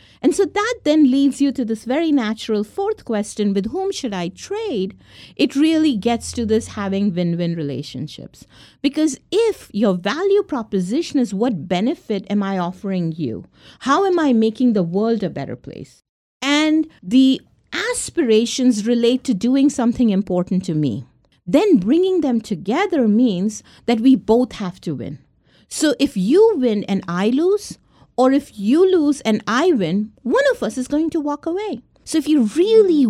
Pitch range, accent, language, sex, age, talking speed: 195-285 Hz, Indian, English, female, 50-69, 170 wpm